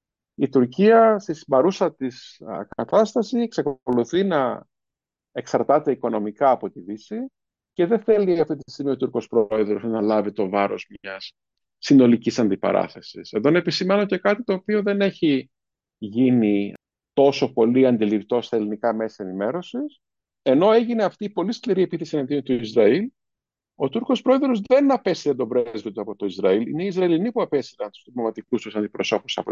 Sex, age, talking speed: male, 50-69, 160 wpm